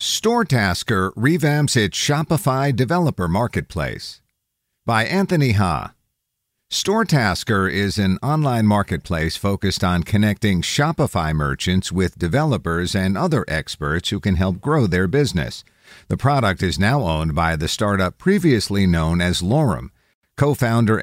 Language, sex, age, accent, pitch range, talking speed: English, male, 50-69, American, 90-125 Hz, 125 wpm